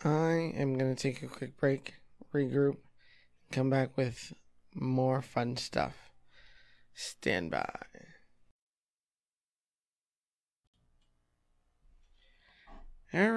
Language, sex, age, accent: English, male, 20-39, American